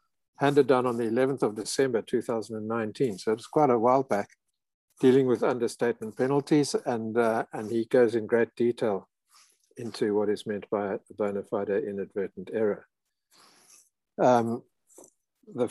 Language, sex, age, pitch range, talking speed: English, male, 60-79, 110-135 Hz, 155 wpm